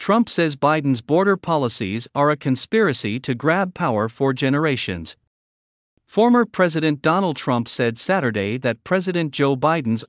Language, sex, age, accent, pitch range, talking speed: English, male, 50-69, American, 115-165 Hz, 135 wpm